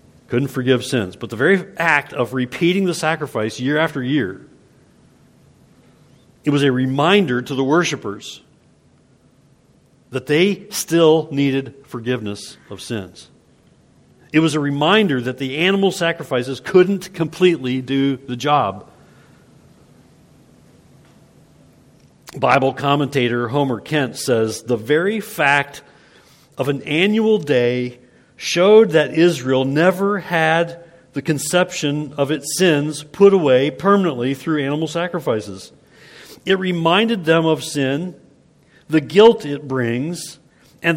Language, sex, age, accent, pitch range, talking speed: English, male, 50-69, American, 130-170 Hz, 115 wpm